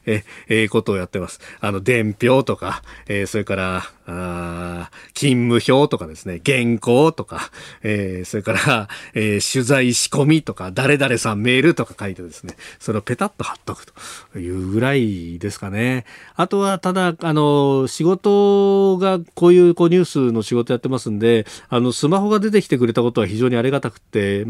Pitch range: 100-135 Hz